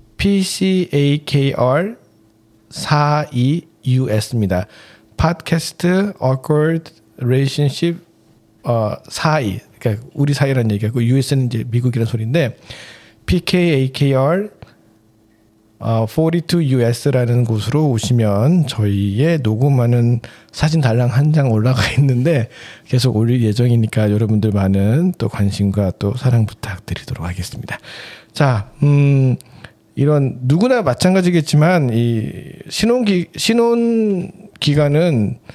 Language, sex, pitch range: Korean, male, 115-160 Hz